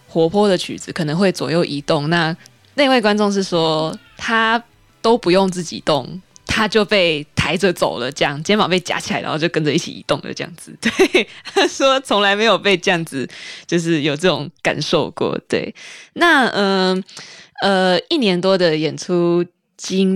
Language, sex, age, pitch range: Chinese, female, 20-39, 165-215 Hz